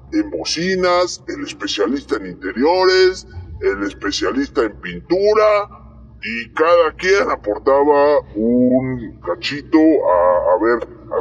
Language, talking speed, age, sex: Spanish, 105 wpm, 40-59, female